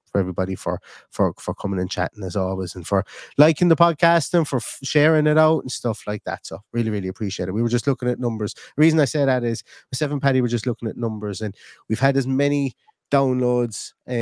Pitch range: 100-120 Hz